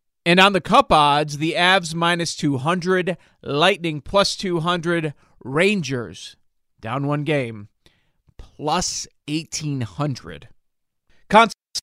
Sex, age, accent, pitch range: male, 40-59, American, 135-180 Hz